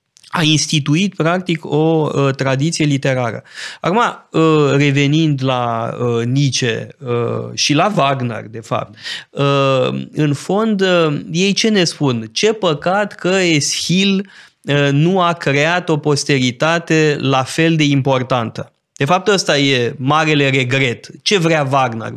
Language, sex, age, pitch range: Romanian, male, 20-39, 130-170 Hz